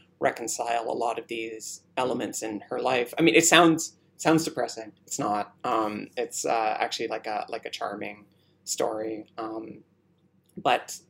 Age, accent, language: 20-39, American, English